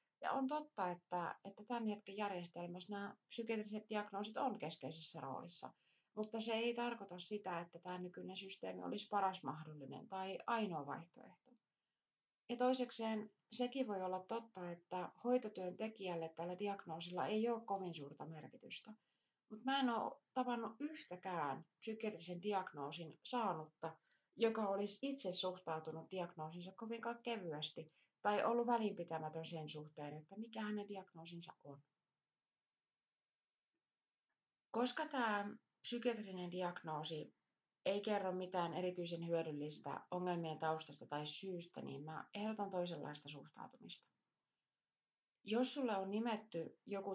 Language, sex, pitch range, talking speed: Finnish, female, 165-220 Hz, 120 wpm